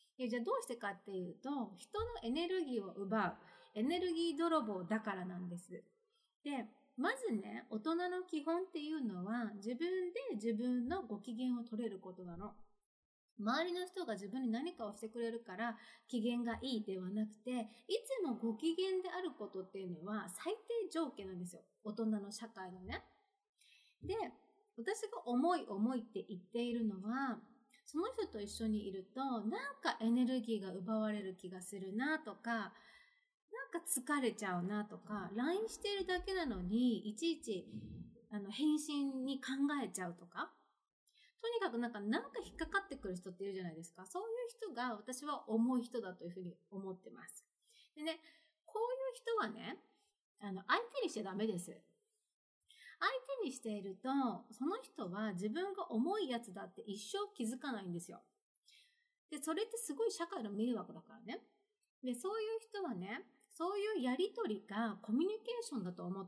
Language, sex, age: Japanese, female, 30-49